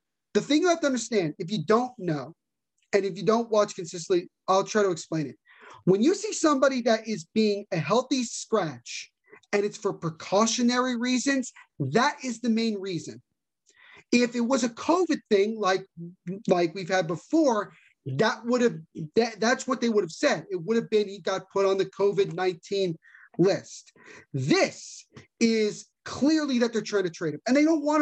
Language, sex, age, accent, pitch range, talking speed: English, male, 30-49, American, 190-245 Hz, 185 wpm